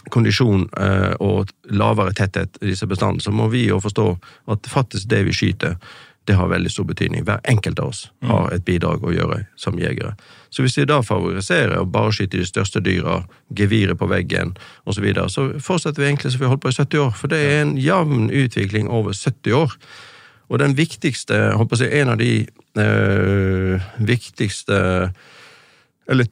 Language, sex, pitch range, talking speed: English, male, 105-135 Hz, 195 wpm